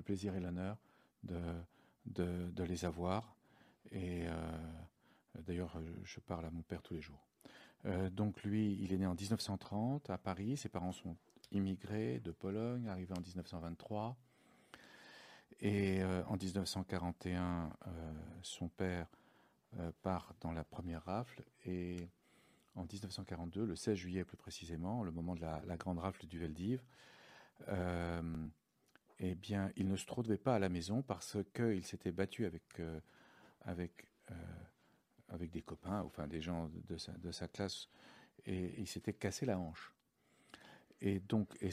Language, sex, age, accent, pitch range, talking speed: French, male, 40-59, French, 85-100 Hz, 155 wpm